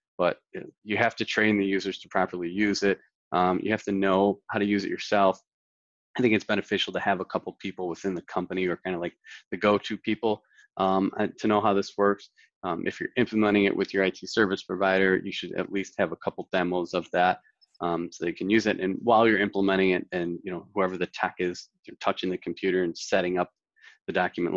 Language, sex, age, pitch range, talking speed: English, male, 20-39, 90-110 Hz, 225 wpm